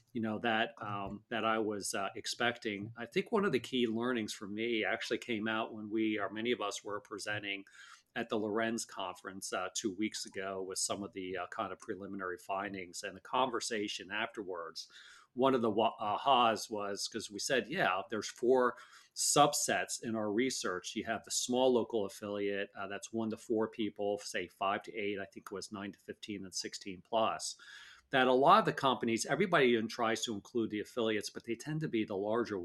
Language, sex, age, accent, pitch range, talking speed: English, male, 40-59, American, 100-120 Hz, 205 wpm